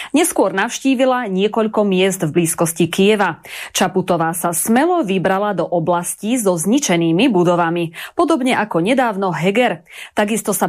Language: Slovak